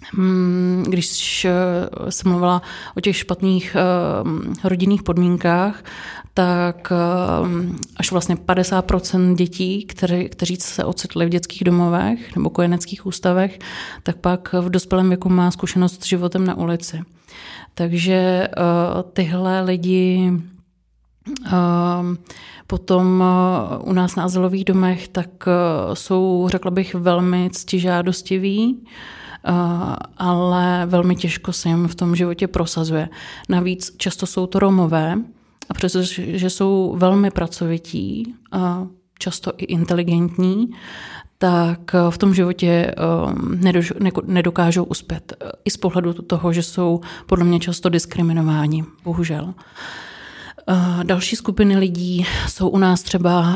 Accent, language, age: native, Czech, 30-49